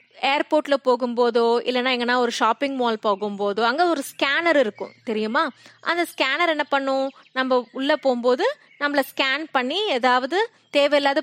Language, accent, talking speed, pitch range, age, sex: Tamil, native, 135 wpm, 225-325 Hz, 20-39, female